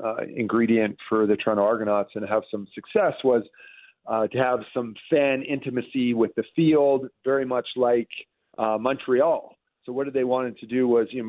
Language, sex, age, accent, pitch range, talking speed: English, male, 40-59, American, 115-135 Hz, 185 wpm